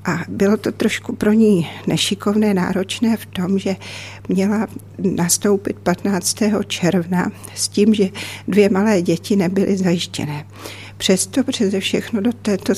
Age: 60-79